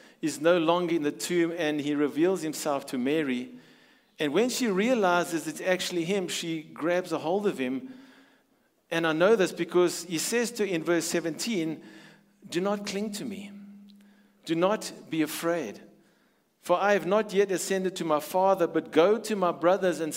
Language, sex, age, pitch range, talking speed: English, male, 50-69, 155-200 Hz, 180 wpm